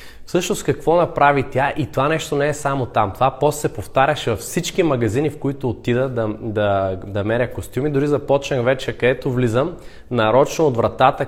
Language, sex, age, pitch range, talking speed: Bulgarian, male, 20-39, 120-140 Hz, 180 wpm